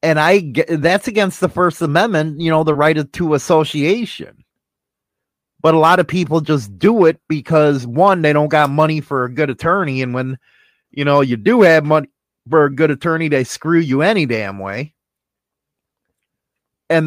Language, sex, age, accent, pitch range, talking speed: English, male, 30-49, American, 140-175 Hz, 175 wpm